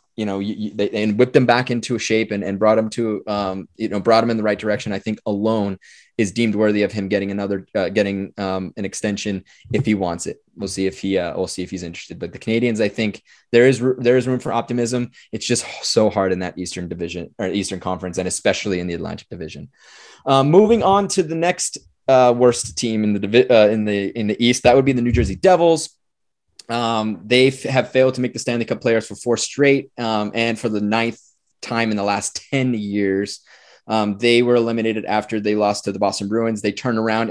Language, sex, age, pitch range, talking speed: English, male, 20-39, 100-120 Hz, 235 wpm